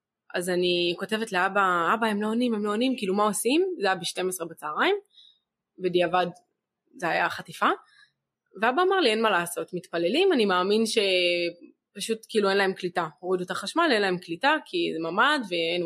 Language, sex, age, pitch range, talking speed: Hebrew, female, 20-39, 175-230 Hz, 170 wpm